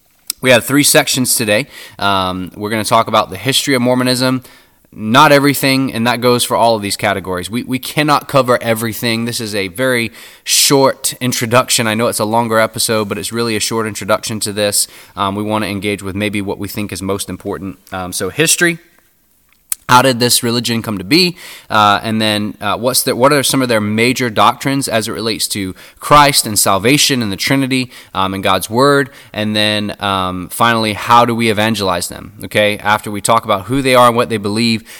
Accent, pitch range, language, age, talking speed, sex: American, 100-125 Hz, English, 20-39, 205 wpm, male